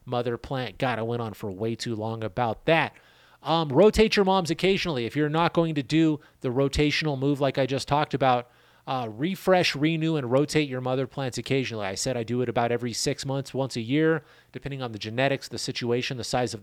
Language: English